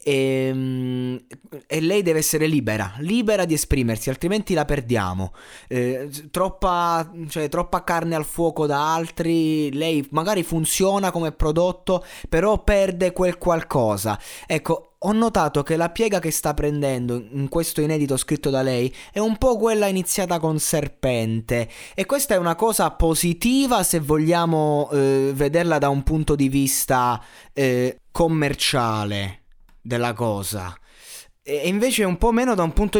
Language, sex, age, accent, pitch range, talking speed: Italian, male, 20-39, native, 140-205 Hz, 140 wpm